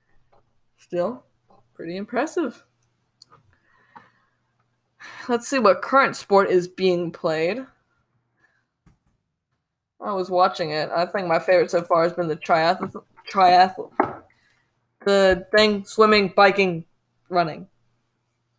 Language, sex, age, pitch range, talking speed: English, female, 20-39, 165-215 Hz, 100 wpm